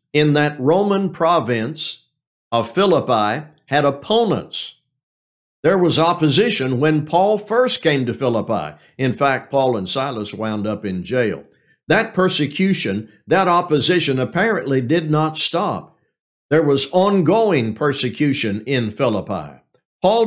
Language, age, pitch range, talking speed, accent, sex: English, 60-79, 125-160 Hz, 120 wpm, American, male